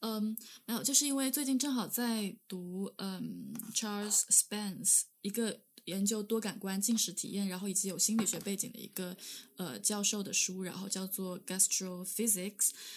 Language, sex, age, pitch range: Chinese, female, 10-29, 190-225 Hz